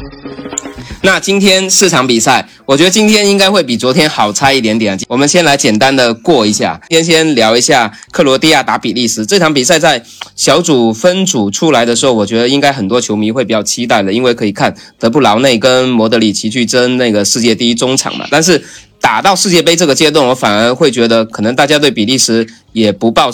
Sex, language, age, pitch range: male, Chinese, 20-39, 110-140 Hz